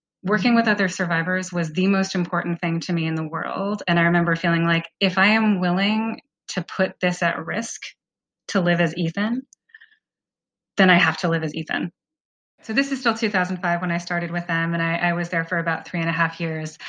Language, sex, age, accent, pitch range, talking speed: English, female, 20-39, American, 170-205 Hz, 215 wpm